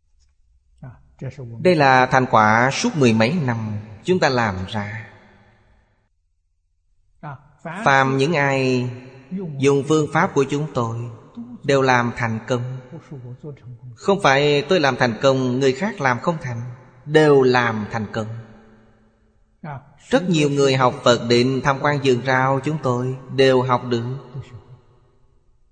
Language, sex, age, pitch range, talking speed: Vietnamese, male, 20-39, 110-140 Hz, 130 wpm